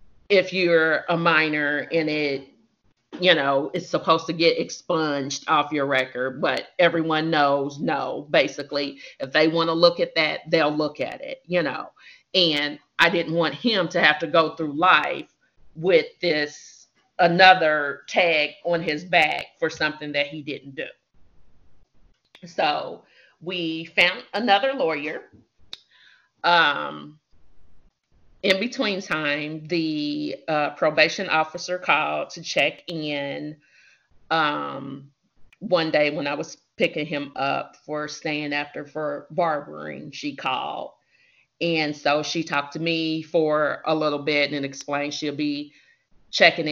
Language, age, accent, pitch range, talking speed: English, 40-59, American, 145-165 Hz, 135 wpm